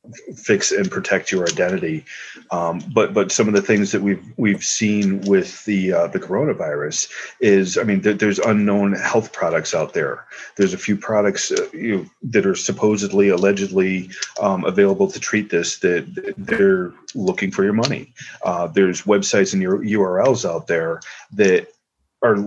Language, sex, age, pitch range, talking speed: English, male, 40-59, 95-120 Hz, 170 wpm